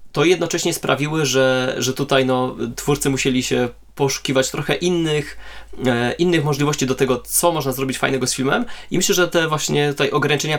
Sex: male